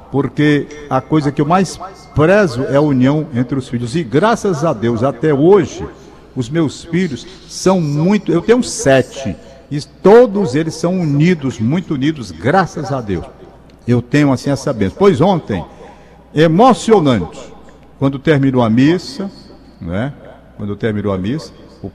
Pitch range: 125-170 Hz